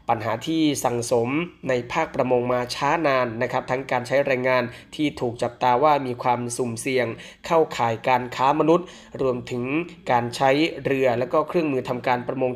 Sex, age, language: male, 20-39, Thai